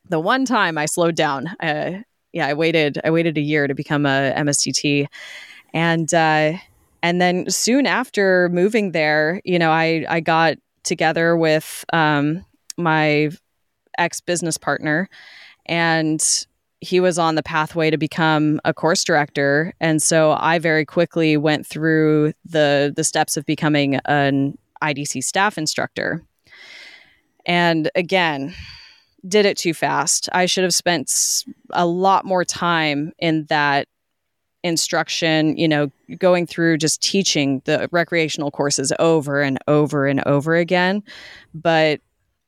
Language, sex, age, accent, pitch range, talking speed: English, female, 10-29, American, 150-180 Hz, 135 wpm